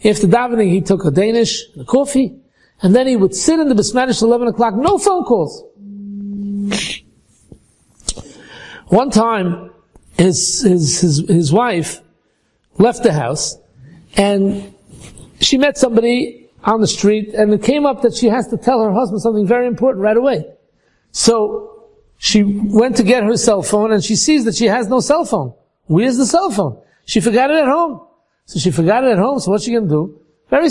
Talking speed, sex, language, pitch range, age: 185 wpm, male, English, 200-270 Hz, 60-79